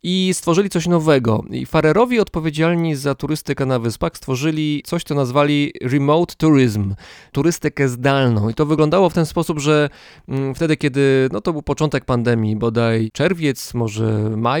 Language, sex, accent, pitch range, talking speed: Polish, male, native, 125-160 Hz, 155 wpm